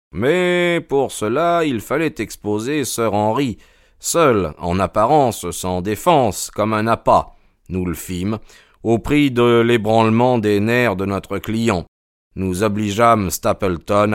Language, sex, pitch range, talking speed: French, male, 95-120 Hz, 130 wpm